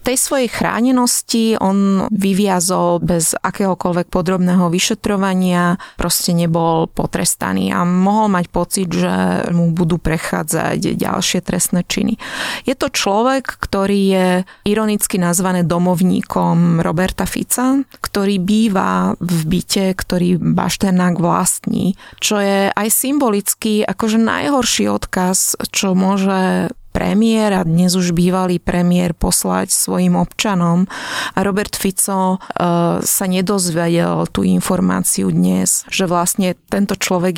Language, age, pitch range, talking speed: Slovak, 20-39, 175-205 Hz, 115 wpm